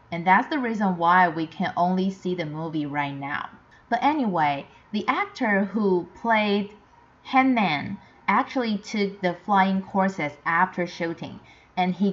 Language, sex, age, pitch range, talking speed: English, female, 30-49, 170-220 Hz, 150 wpm